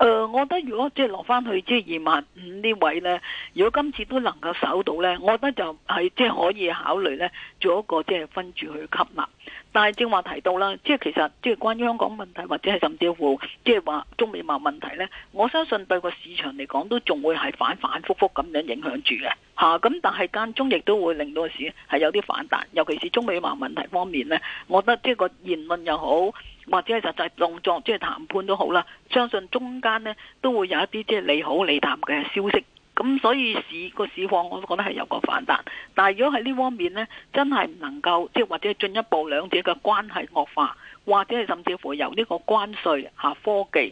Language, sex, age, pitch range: Chinese, female, 50-69, 175-245 Hz